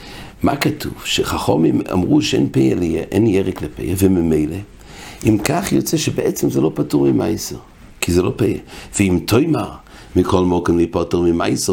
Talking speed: 115 wpm